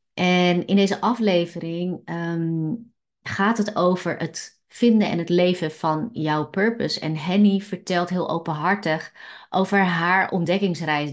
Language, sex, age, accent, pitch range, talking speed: Dutch, female, 30-49, Dutch, 160-200 Hz, 125 wpm